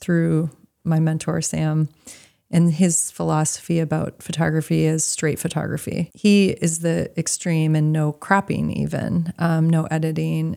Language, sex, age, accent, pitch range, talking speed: English, female, 30-49, American, 155-175 Hz, 130 wpm